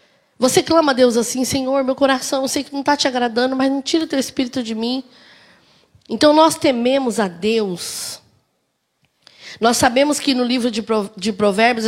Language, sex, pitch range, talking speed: Portuguese, female, 205-275 Hz, 175 wpm